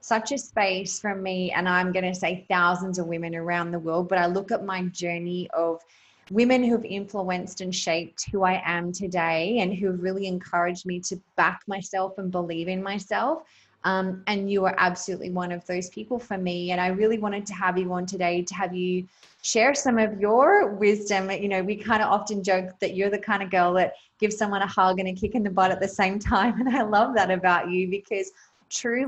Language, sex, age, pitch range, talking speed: English, female, 20-39, 180-215 Hz, 225 wpm